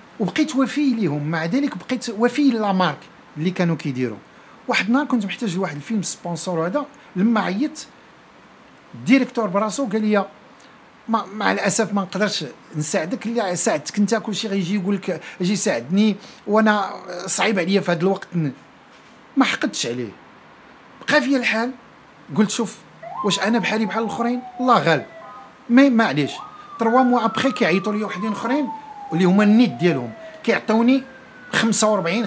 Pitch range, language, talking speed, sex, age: 165-235 Hz, Arabic, 140 wpm, male, 50-69